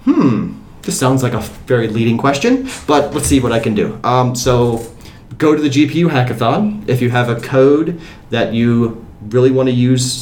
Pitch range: 110-140 Hz